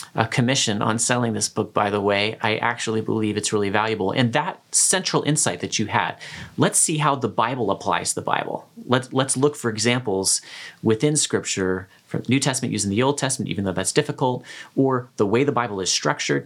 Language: English